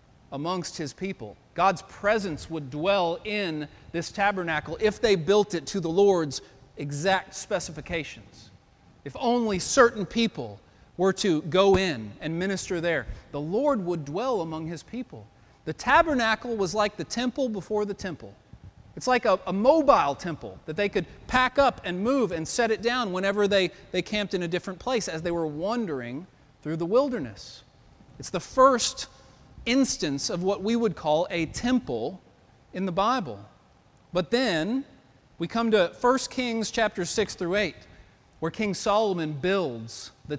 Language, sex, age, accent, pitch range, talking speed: English, male, 40-59, American, 160-235 Hz, 160 wpm